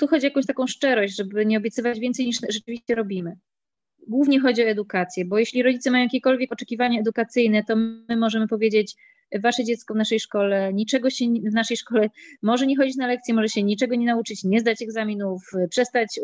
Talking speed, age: 190 wpm, 20-39